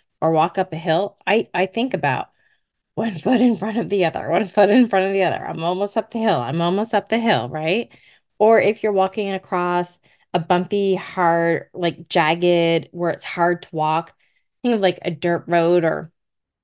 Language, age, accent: English, 20-39, American